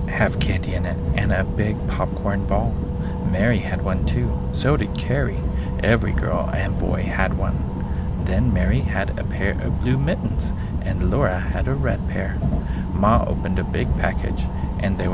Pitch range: 70-95 Hz